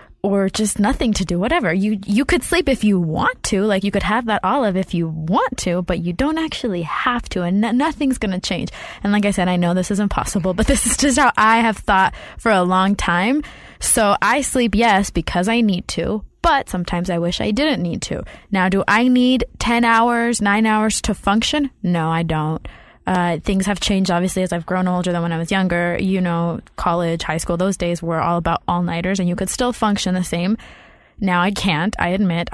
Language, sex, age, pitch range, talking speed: English, female, 20-39, 180-235 Hz, 225 wpm